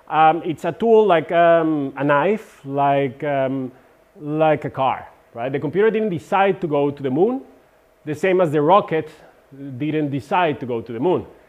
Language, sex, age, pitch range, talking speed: Croatian, male, 30-49, 135-195 Hz, 185 wpm